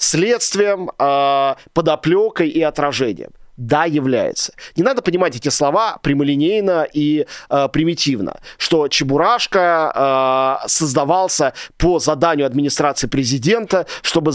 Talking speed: 105 wpm